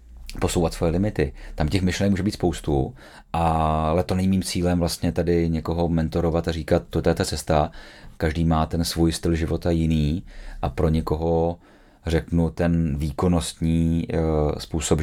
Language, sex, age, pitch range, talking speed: Czech, male, 30-49, 75-85 Hz, 150 wpm